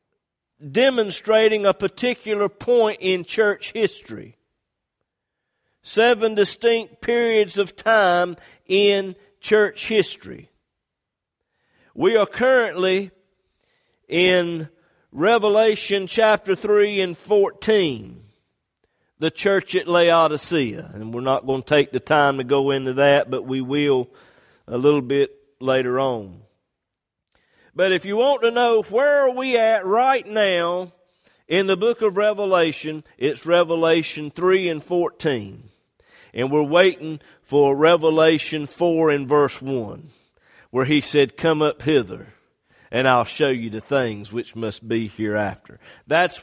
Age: 50-69